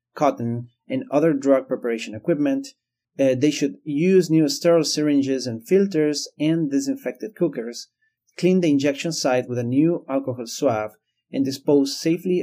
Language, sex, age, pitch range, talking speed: English, male, 30-49, 125-155 Hz, 145 wpm